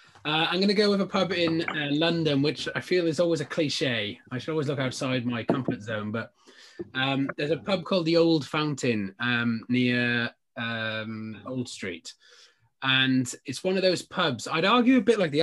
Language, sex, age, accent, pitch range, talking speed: English, male, 20-39, British, 120-145 Hz, 200 wpm